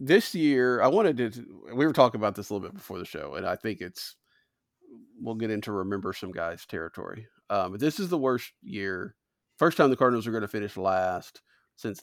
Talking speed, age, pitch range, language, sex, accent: 220 wpm, 40-59, 105-135 Hz, English, male, American